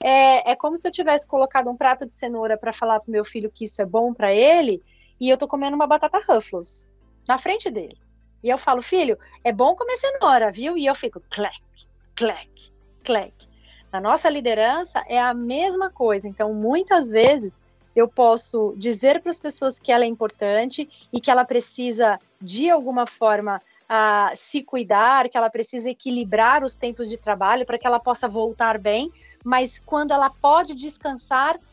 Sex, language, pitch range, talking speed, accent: female, Portuguese, 225-300 Hz, 185 wpm, Brazilian